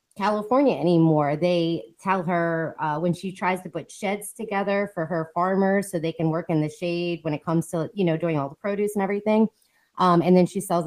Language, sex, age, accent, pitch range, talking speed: English, female, 30-49, American, 145-180 Hz, 220 wpm